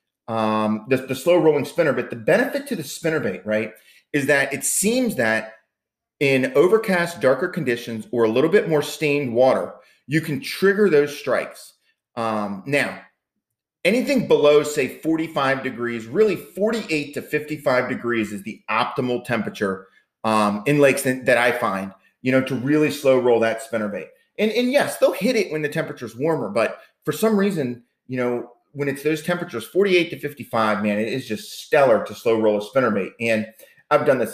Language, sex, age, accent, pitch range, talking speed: English, male, 30-49, American, 115-170 Hz, 185 wpm